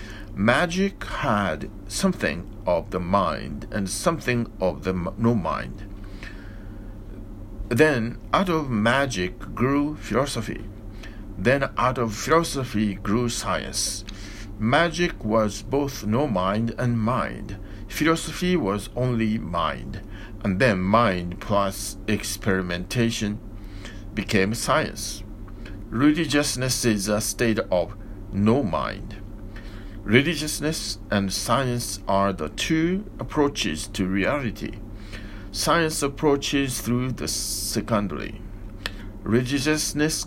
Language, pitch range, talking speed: English, 100-125 Hz, 90 wpm